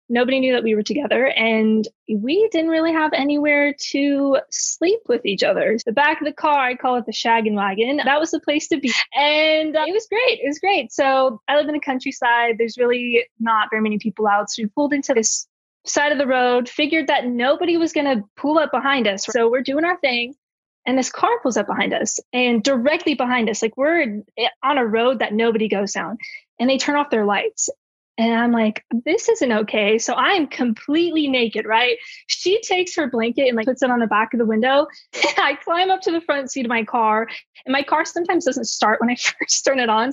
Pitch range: 235-310 Hz